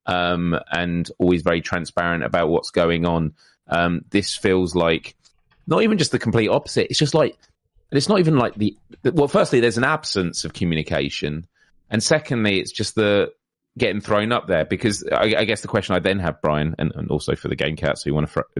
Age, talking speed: 30-49, 210 wpm